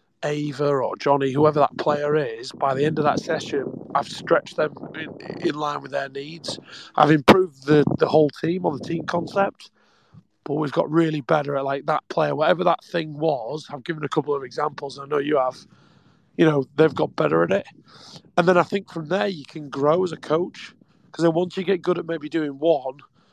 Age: 30-49